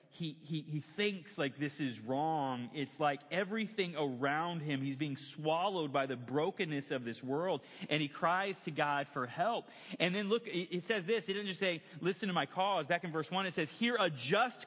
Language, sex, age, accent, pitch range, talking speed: English, male, 30-49, American, 150-215 Hz, 215 wpm